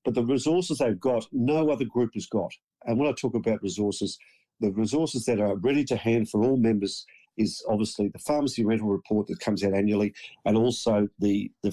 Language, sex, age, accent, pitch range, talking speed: English, male, 50-69, Australian, 105-120 Hz, 205 wpm